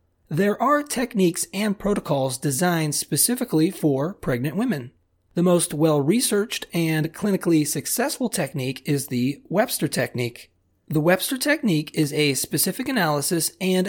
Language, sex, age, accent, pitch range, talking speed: English, male, 30-49, American, 140-190 Hz, 125 wpm